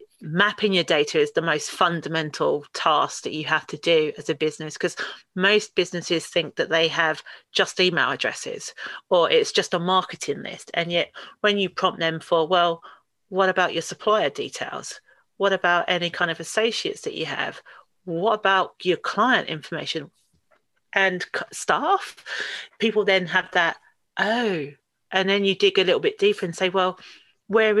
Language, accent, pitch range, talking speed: English, British, 175-225 Hz, 170 wpm